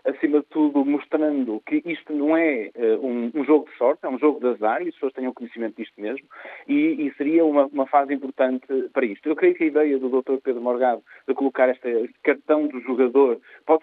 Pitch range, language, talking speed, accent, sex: 125-170 Hz, Portuguese, 225 wpm, Portuguese, male